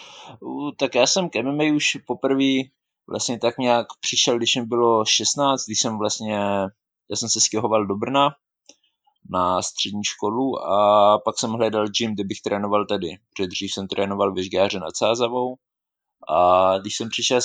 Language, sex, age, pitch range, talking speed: Slovak, male, 20-39, 100-120 Hz, 150 wpm